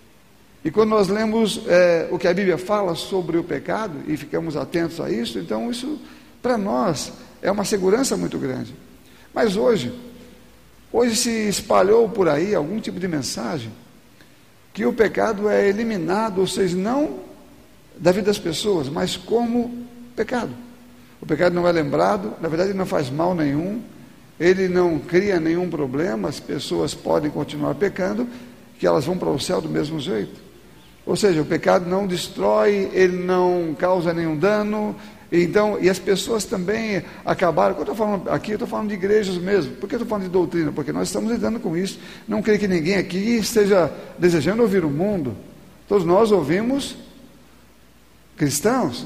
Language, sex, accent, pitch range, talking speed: Portuguese, male, Brazilian, 175-225 Hz, 170 wpm